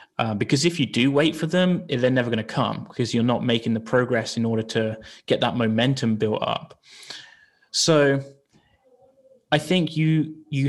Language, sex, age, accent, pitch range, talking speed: English, male, 20-39, British, 115-155 Hz, 180 wpm